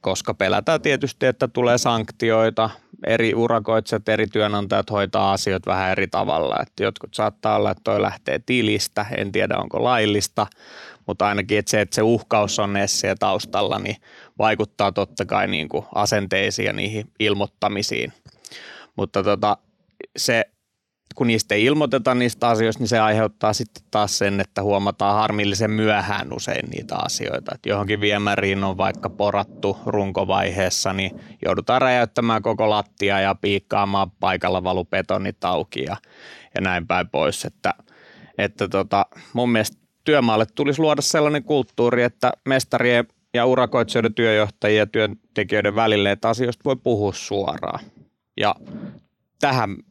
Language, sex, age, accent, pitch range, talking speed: Finnish, male, 20-39, native, 100-120 Hz, 140 wpm